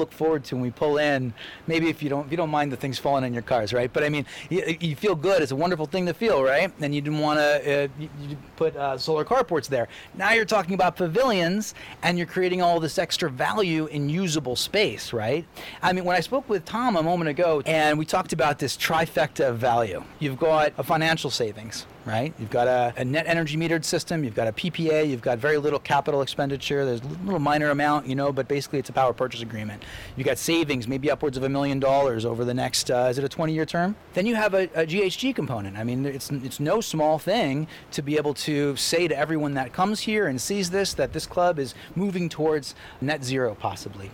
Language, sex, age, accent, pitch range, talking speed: English, male, 30-49, American, 135-170 Hz, 235 wpm